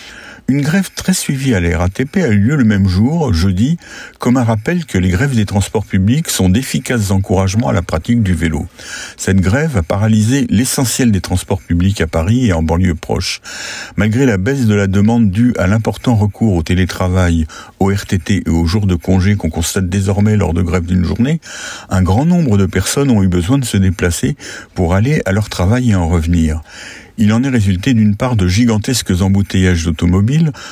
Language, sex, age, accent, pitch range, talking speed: French, male, 60-79, French, 90-115 Hz, 195 wpm